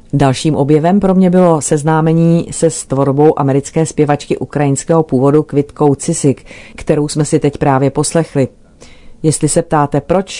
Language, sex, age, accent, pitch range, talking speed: Czech, female, 40-59, native, 135-160 Hz, 140 wpm